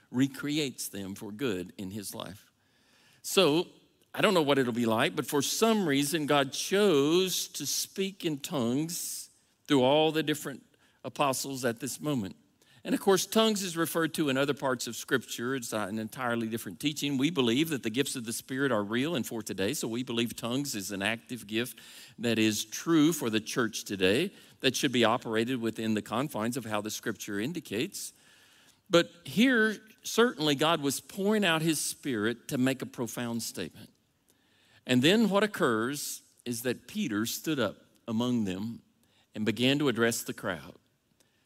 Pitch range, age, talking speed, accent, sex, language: 115-155 Hz, 50-69, 175 wpm, American, male, English